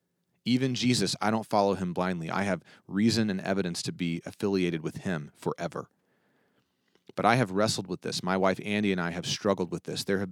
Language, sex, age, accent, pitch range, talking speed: English, male, 30-49, American, 95-120 Hz, 205 wpm